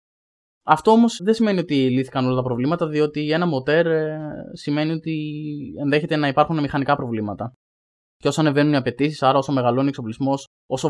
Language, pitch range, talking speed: Greek, 130-160 Hz, 165 wpm